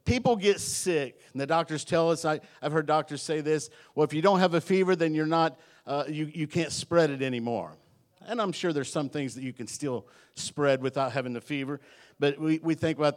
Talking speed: 230 wpm